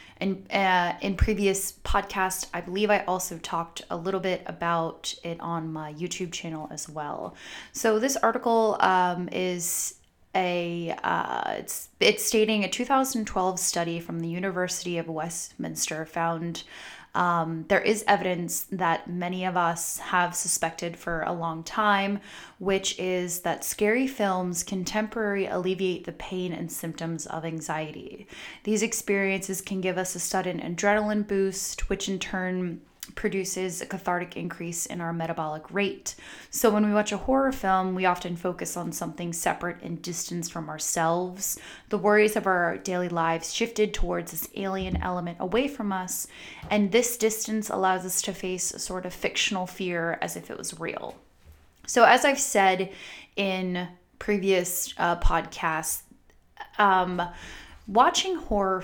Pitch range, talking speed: 170-200 Hz, 150 wpm